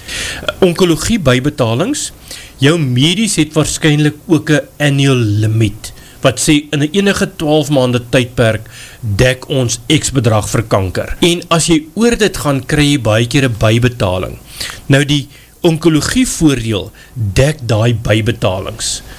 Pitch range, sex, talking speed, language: 120-150 Hz, male, 130 wpm, English